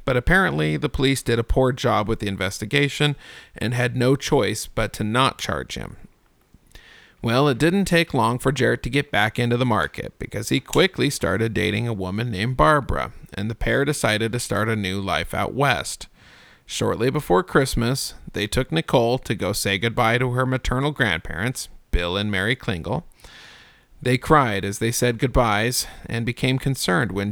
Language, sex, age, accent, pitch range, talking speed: English, male, 40-59, American, 105-135 Hz, 180 wpm